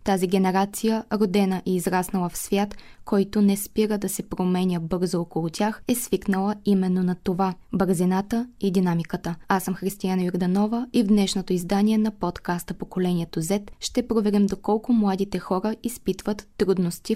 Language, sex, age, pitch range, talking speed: Bulgarian, female, 20-39, 180-215 Hz, 150 wpm